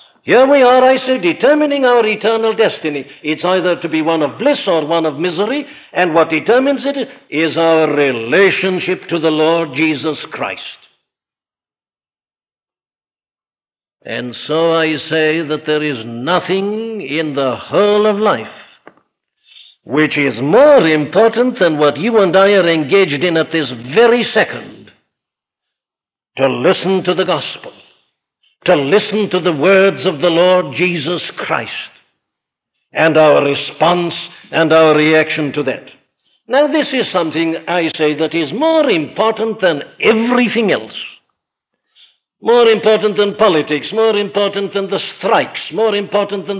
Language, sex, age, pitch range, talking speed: English, male, 60-79, 155-215 Hz, 140 wpm